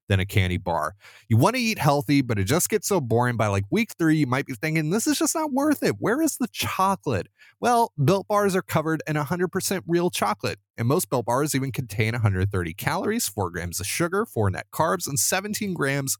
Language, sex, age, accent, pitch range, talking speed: English, male, 30-49, American, 110-180 Hz, 220 wpm